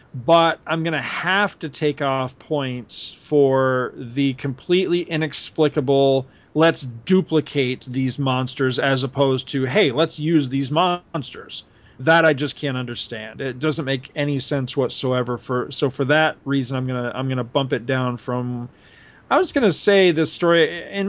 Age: 40-59